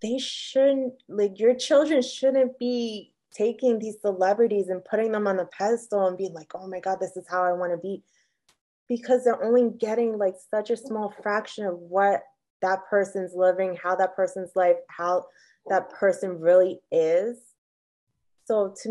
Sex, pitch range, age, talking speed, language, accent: female, 175-220 Hz, 20-39, 170 wpm, English, American